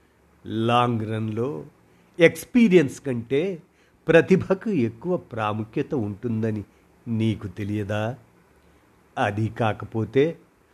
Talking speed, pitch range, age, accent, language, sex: 65 wpm, 105-135 Hz, 50-69, native, Telugu, male